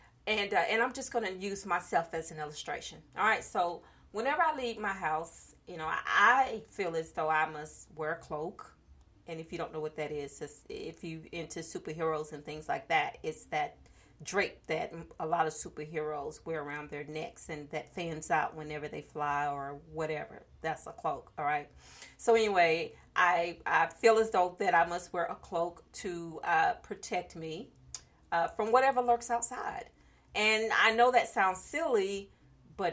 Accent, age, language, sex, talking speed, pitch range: American, 40-59, English, female, 185 wpm, 155-205 Hz